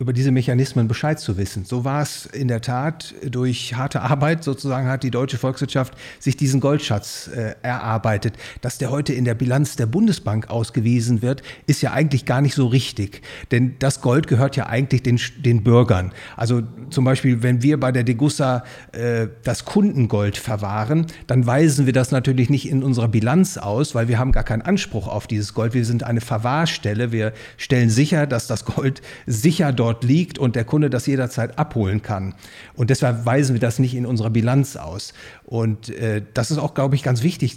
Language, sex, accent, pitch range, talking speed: German, male, German, 115-140 Hz, 195 wpm